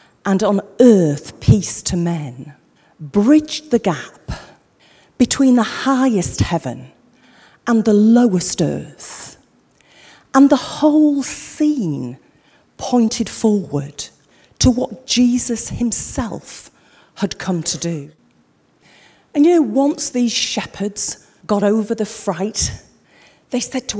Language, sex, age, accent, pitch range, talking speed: English, female, 40-59, British, 175-245 Hz, 110 wpm